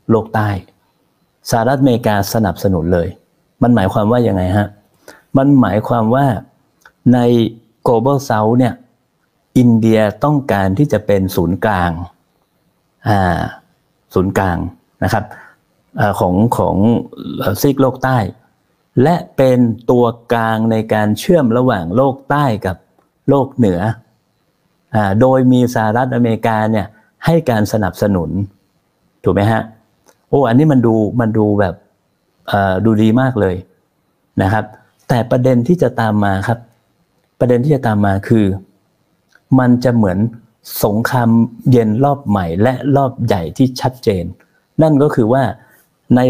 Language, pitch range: Thai, 105-130 Hz